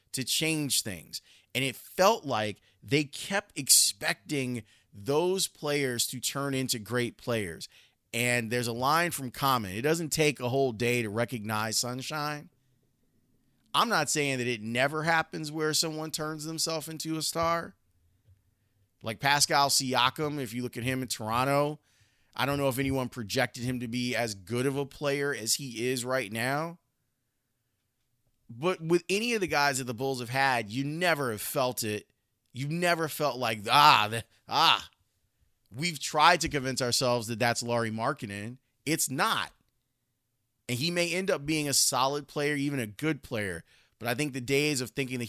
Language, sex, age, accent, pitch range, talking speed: English, male, 30-49, American, 120-150 Hz, 170 wpm